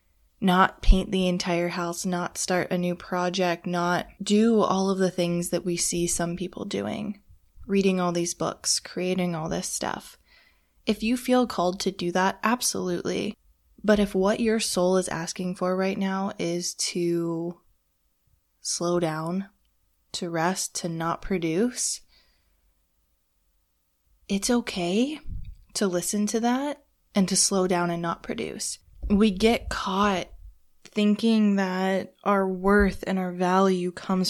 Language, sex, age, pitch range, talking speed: English, female, 20-39, 175-195 Hz, 140 wpm